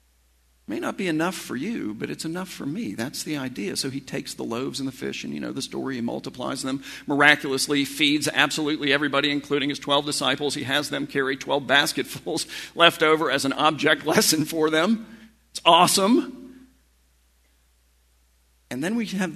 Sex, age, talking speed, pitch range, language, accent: male, 50-69, 180 wpm, 135-195 Hz, English, American